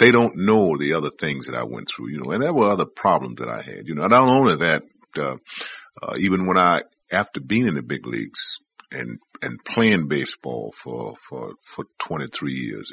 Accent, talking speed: American, 205 wpm